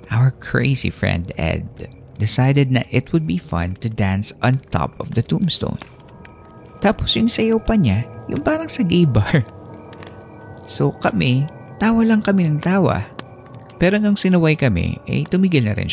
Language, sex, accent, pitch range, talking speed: Filipino, male, native, 100-140 Hz, 160 wpm